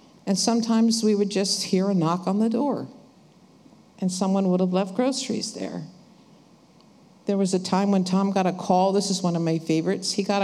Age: 50-69